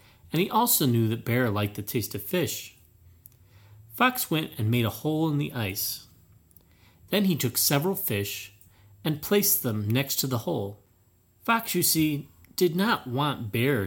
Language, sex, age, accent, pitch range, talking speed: English, male, 30-49, American, 100-145 Hz, 170 wpm